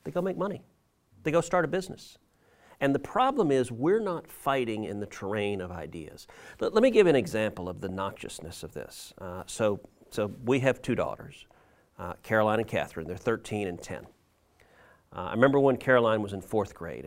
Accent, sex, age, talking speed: American, male, 40-59, 195 wpm